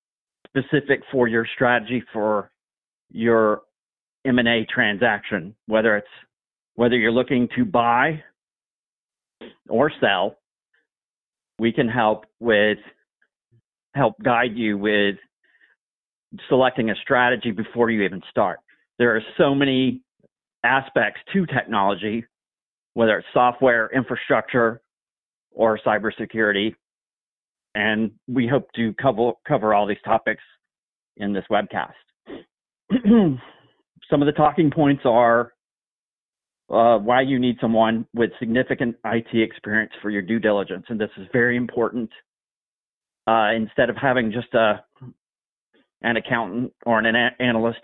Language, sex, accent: English, male, American